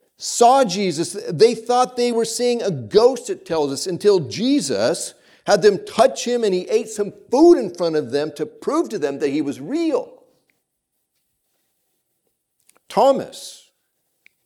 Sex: male